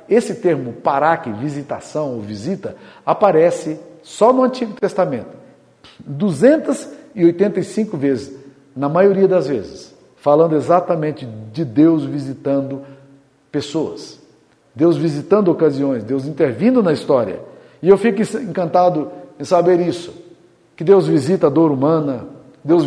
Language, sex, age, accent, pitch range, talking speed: Portuguese, male, 50-69, Brazilian, 150-190 Hz, 115 wpm